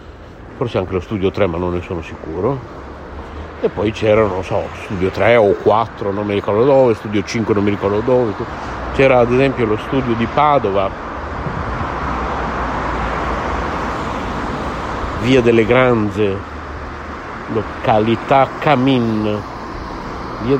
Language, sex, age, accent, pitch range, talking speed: Italian, male, 60-79, native, 75-120 Hz, 120 wpm